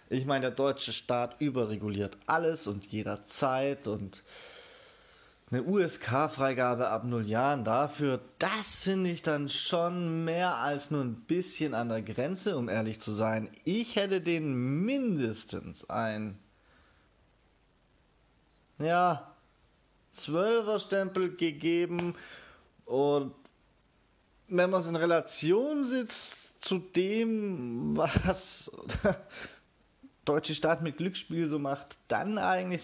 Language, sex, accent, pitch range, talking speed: German, male, German, 115-175 Hz, 110 wpm